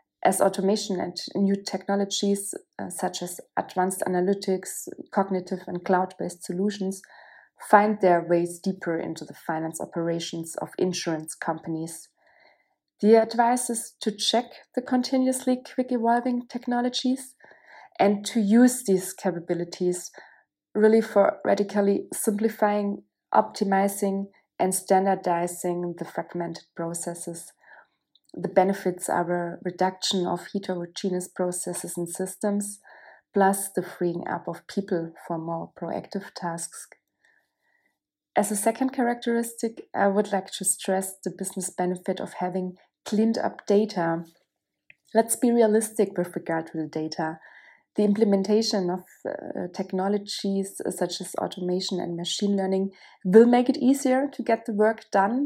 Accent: German